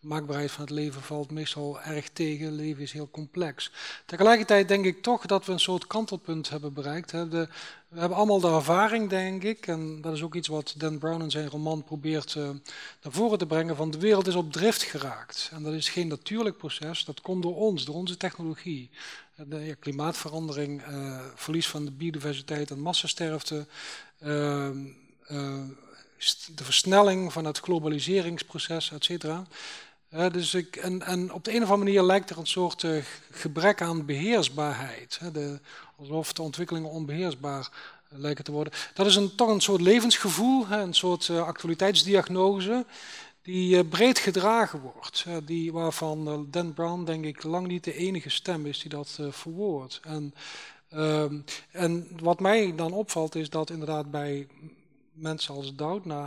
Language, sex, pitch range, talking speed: Dutch, male, 150-185 Hz, 175 wpm